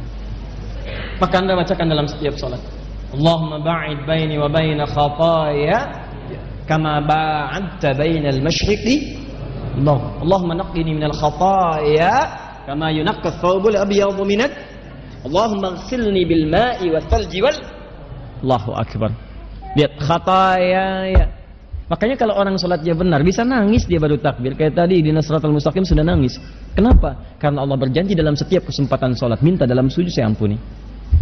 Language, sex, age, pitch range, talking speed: Indonesian, male, 30-49, 140-175 Hz, 70 wpm